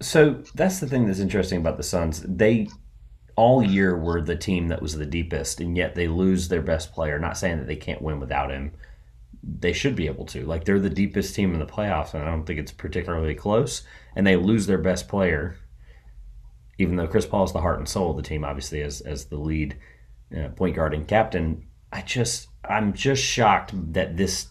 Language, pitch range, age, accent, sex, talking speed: English, 75-95 Hz, 30-49, American, male, 220 wpm